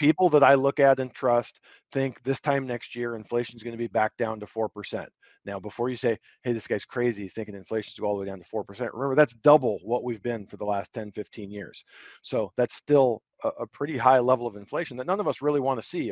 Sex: male